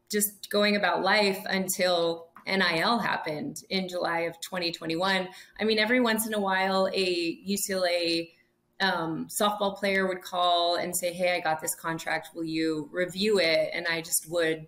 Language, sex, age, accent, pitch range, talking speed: English, female, 30-49, American, 170-210 Hz, 165 wpm